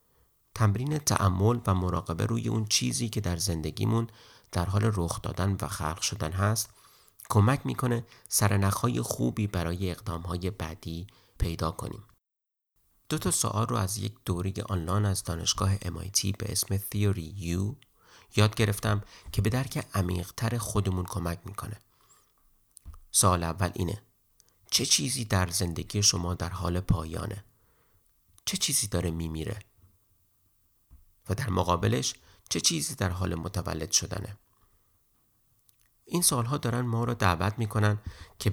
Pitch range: 90-110 Hz